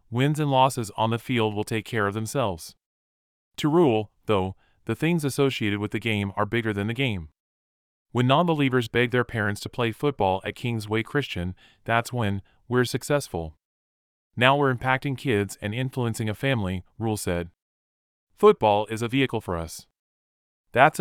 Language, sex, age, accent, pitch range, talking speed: English, male, 30-49, American, 90-130 Hz, 165 wpm